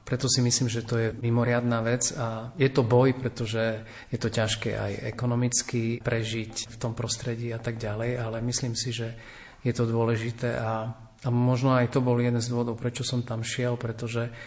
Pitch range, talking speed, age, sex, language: 115-130 Hz, 190 wpm, 40-59, male, Slovak